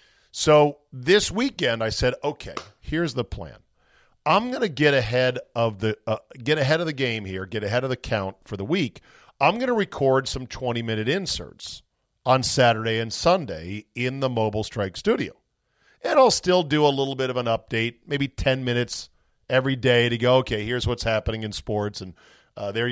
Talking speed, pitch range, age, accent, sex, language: 195 wpm, 105-135 Hz, 40-59, American, male, English